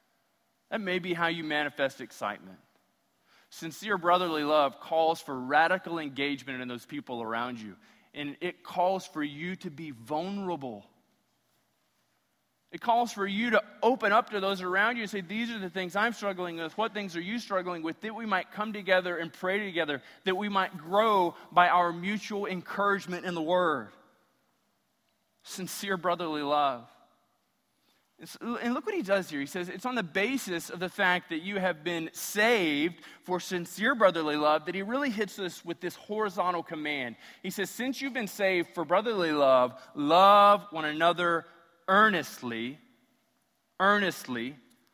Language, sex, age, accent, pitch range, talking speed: English, male, 20-39, American, 155-205 Hz, 165 wpm